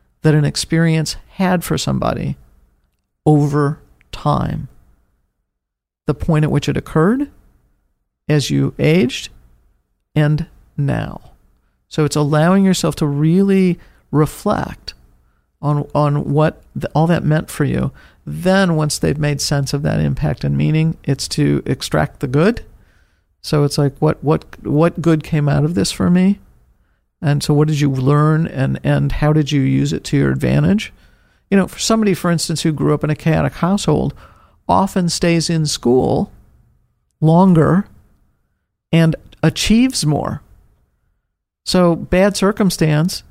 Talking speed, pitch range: 145 wpm, 140-165 Hz